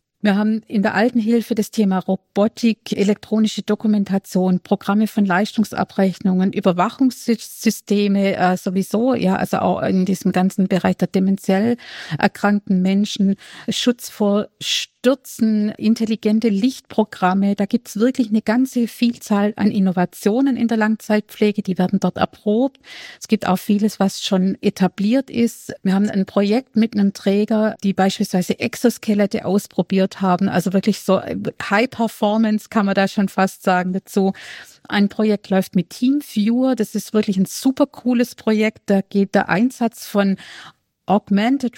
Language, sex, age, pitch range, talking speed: German, female, 50-69, 190-225 Hz, 145 wpm